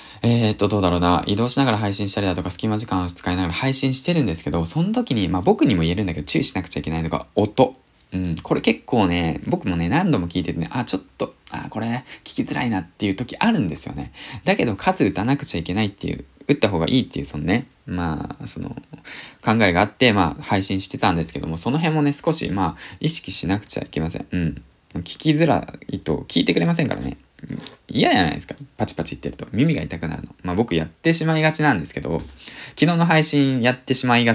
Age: 20-39